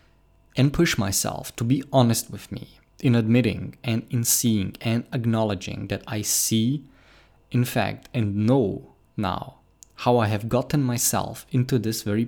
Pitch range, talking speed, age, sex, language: 105-125 Hz, 150 wpm, 20-39, male, English